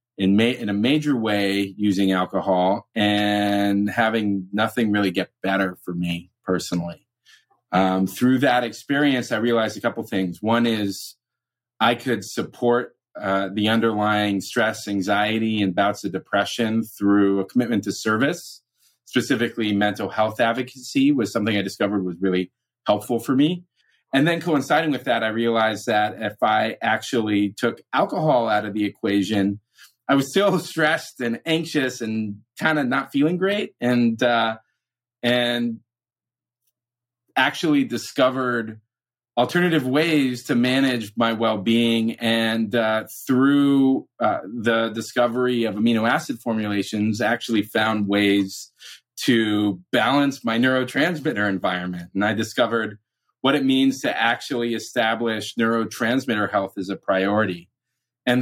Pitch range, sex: 105-125 Hz, male